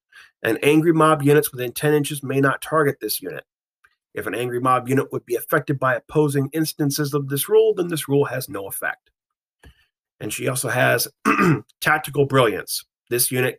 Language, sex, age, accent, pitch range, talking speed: English, male, 40-59, American, 120-155 Hz, 175 wpm